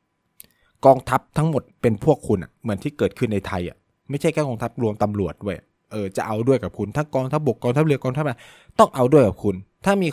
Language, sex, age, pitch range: Thai, male, 20-39, 110-150 Hz